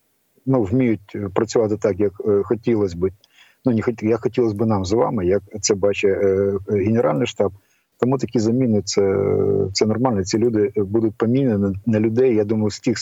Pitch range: 100-115 Hz